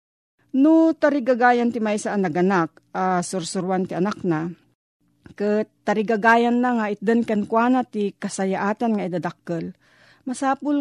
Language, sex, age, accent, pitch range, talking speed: Filipino, female, 40-59, native, 185-235 Hz, 115 wpm